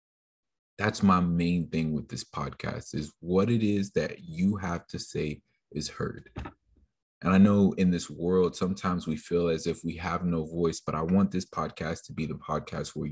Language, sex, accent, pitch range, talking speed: English, male, American, 80-100 Hz, 195 wpm